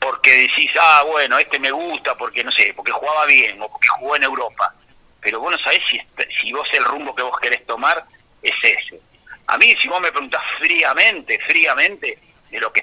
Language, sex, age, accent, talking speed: Spanish, male, 40-59, Argentinian, 205 wpm